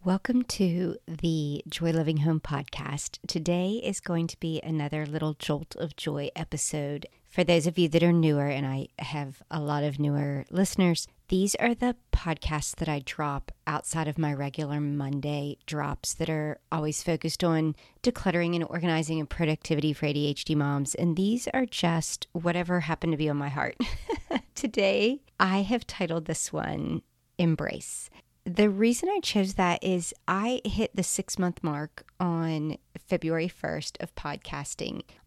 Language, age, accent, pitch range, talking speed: English, 40-59, American, 155-180 Hz, 160 wpm